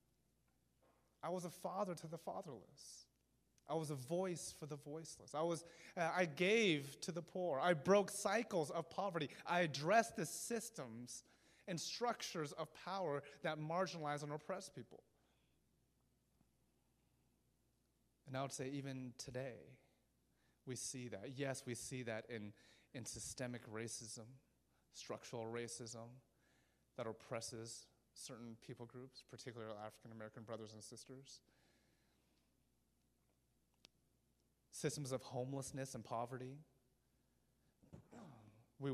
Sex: male